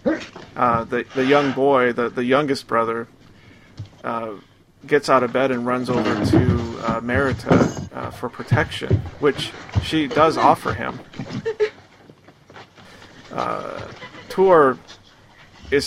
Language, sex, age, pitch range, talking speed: English, male, 40-59, 115-130 Hz, 115 wpm